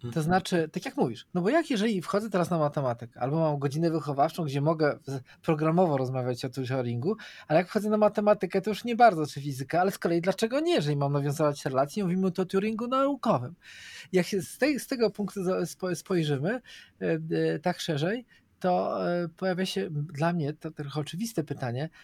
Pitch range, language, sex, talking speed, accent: 145-195 Hz, Polish, male, 190 wpm, native